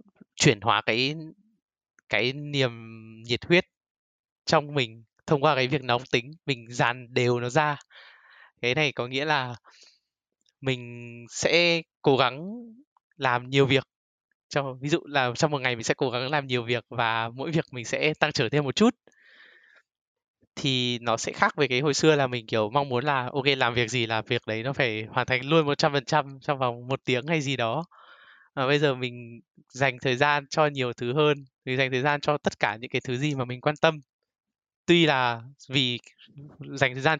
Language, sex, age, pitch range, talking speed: Vietnamese, male, 20-39, 120-150 Hz, 195 wpm